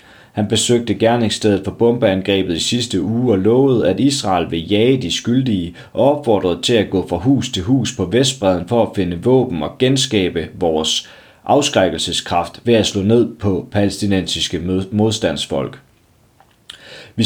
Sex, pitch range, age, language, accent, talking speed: male, 90-115 Hz, 30-49, Danish, native, 150 wpm